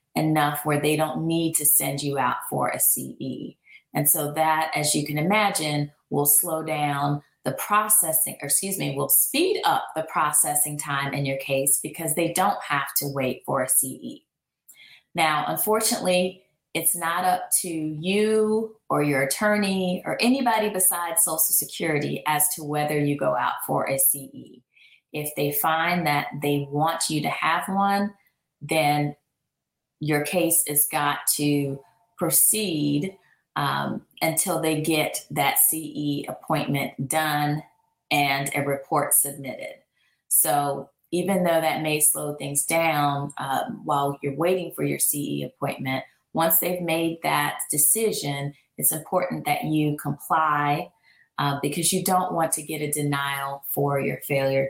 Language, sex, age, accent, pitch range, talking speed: English, female, 30-49, American, 145-170 Hz, 150 wpm